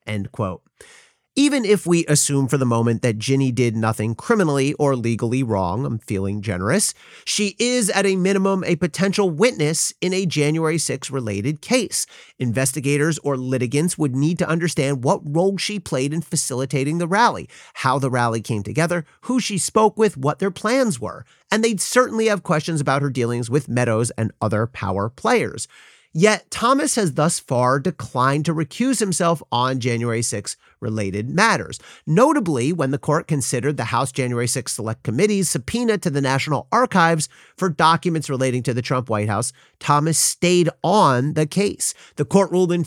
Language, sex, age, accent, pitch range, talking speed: English, male, 40-59, American, 125-185 Hz, 170 wpm